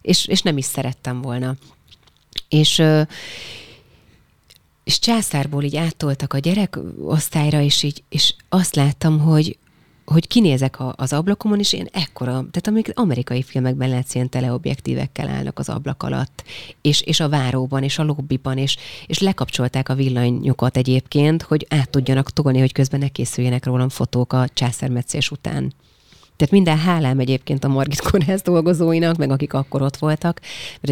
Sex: female